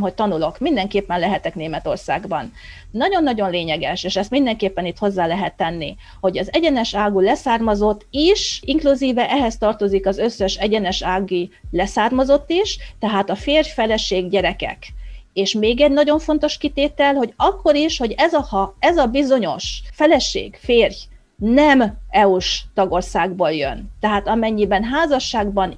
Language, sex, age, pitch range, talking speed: Hungarian, female, 40-59, 195-265 Hz, 135 wpm